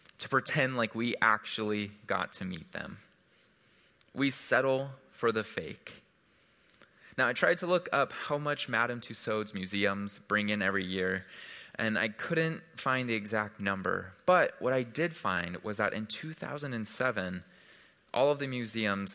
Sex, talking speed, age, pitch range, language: male, 155 wpm, 20-39, 100-130 Hz, English